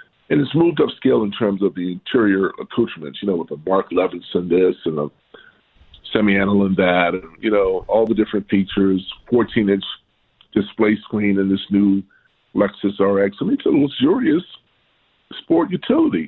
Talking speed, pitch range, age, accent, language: 160 wpm, 90-115 Hz, 40-59, American, English